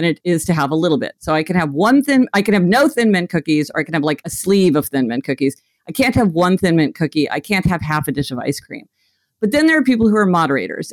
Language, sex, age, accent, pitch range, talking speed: English, female, 50-69, American, 160-225 Hz, 300 wpm